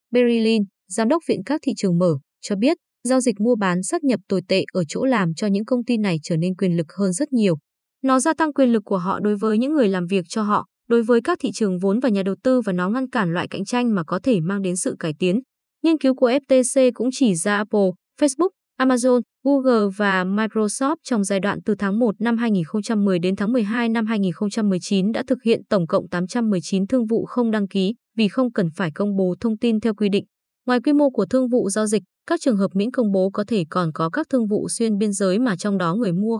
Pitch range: 190-250 Hz